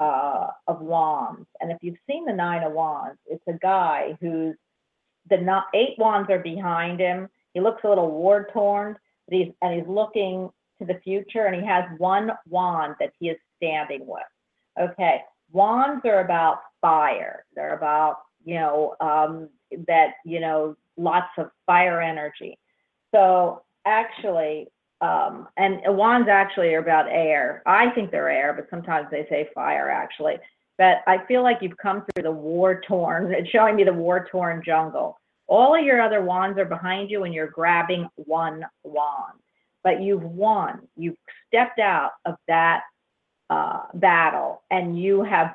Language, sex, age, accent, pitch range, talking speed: English, female, 40-59, American, 165-195 Hz, 160 wpm